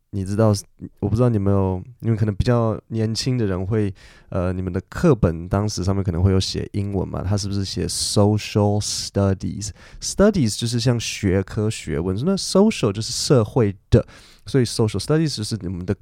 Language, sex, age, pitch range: Chinese, male, 20-39, 100-130 Hz